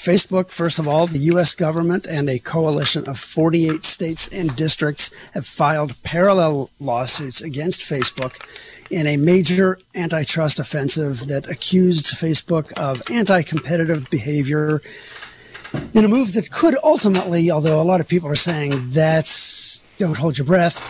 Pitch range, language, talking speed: 135-175 Hz, English, 145 wpm